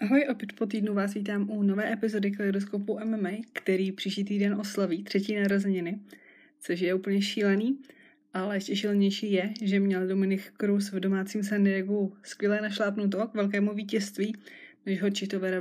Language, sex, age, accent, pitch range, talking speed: Czech, female, 20-39, native, 190-205 Hz, 160 wpm